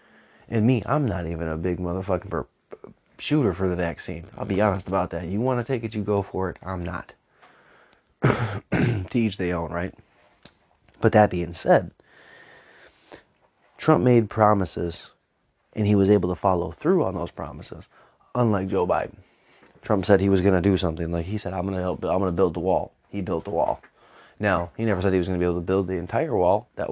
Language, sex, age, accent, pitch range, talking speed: English, male, 30-49, American, 85-100 Hz, 205 wpm